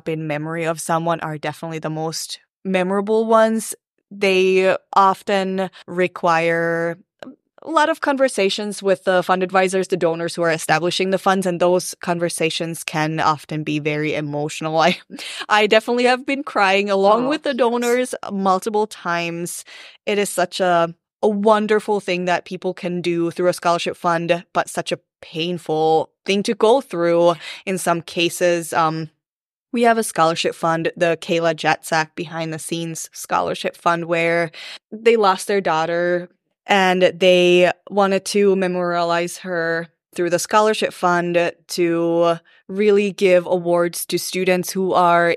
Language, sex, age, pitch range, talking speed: English, female, 20-39, 170-195 Hz, 145 wpm